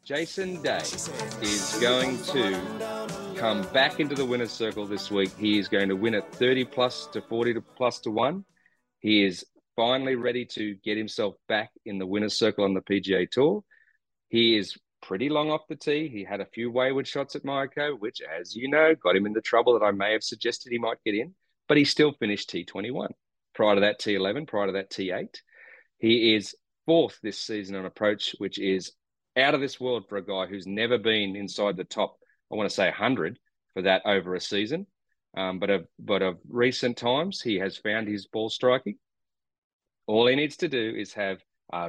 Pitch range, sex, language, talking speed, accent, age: 95-125 Hz, male, English, 210 wpm, Australian, 30-49